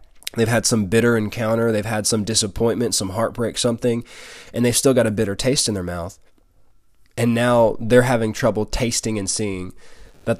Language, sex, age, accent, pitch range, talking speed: English, male, 20-39, American, 105-120 Hz, 180 wpm